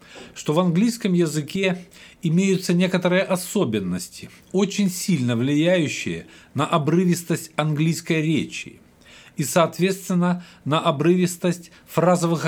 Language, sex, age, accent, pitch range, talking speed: Russian, male, 50-69, native, 145-180 Hz, 90 wpm